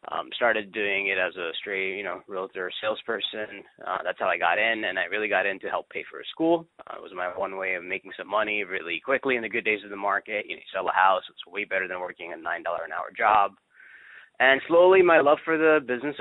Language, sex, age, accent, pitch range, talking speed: English, male, 20-39, American, 100-130 Hz, 265 wpm